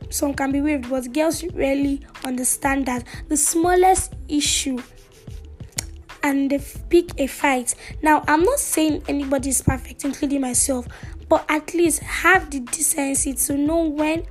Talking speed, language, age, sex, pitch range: 145 wpm, English, 10-29, female, 270-315 Hz